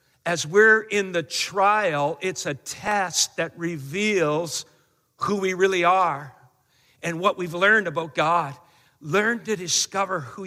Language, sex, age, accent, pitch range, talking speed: English, male, 50-69, American, 140-195 Hz, 140 wpm